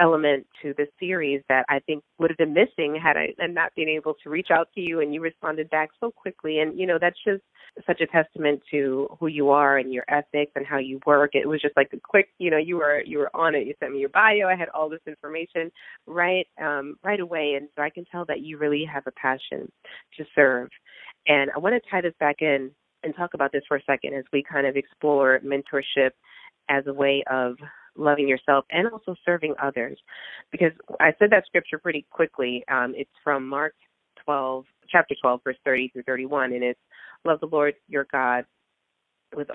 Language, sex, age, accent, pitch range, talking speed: English, female, 30-49, American, 130-160 Hz, 220 wpm